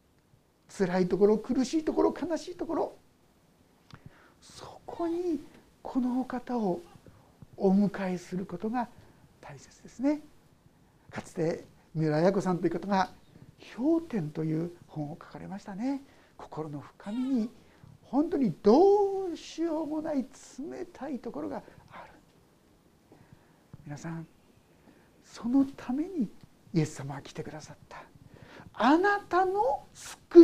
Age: 60-79